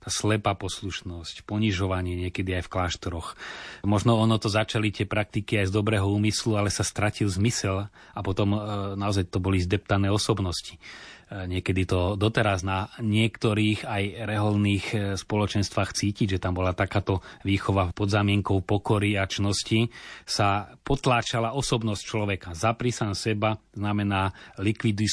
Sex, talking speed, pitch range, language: male, 130 wpm, 100-110 Hz, Slovak